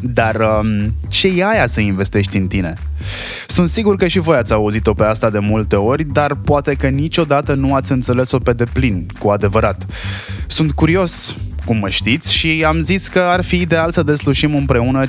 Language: English